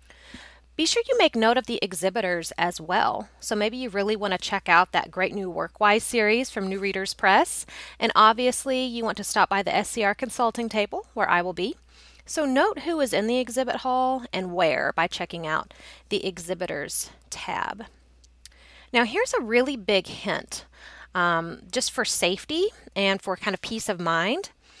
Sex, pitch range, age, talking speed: female, 180-235 Hz, 30-49, 180 wpm